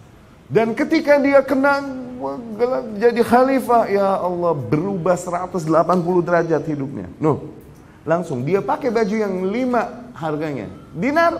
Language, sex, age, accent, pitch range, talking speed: Indonesian, male, 30-49, native, 145-225 Hz, 110 wpm